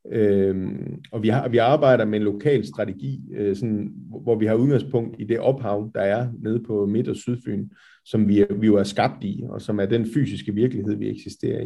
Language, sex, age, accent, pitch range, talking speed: Danish, male, 40-59, native, 100-120 Hz, 210 wpm